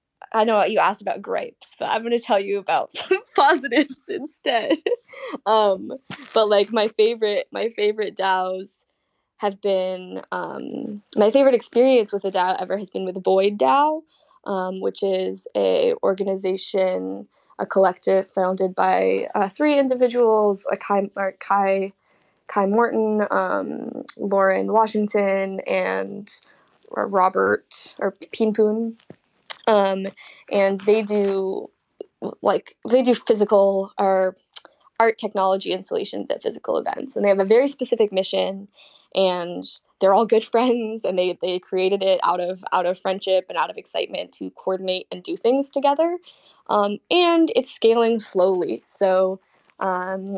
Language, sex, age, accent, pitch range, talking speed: English, female, 10-29, American, 190-245 Hz, 140 wpm